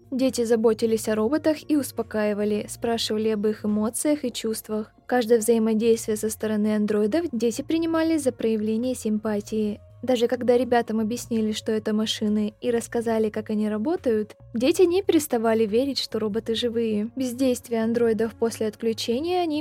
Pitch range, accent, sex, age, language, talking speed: 215-245 Hz, native, female, 20-39, Russian, 140 wpm